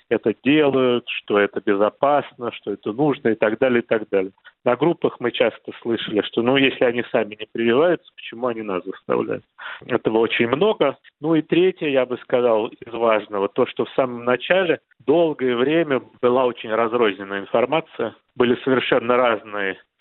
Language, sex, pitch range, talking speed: Russian, male, 110-140 Hz, 165 wpm